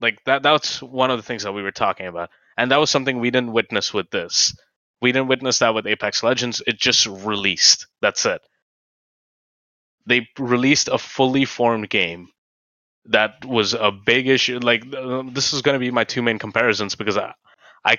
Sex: male